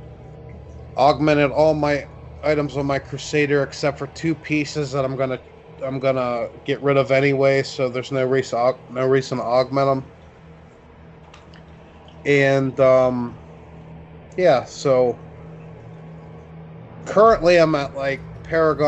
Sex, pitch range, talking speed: male, 125-145 Hz, 120 wpm